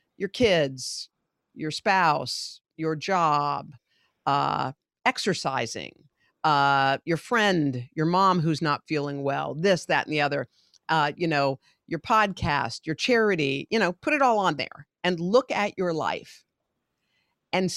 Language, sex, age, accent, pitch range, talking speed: English, female, 50-69, American, 155-200 Hz, 140 wpm